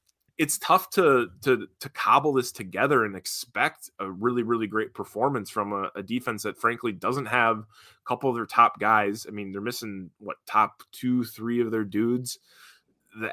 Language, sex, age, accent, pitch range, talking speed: English, male, 20-39, American, 110-130 Hz, 185 wpm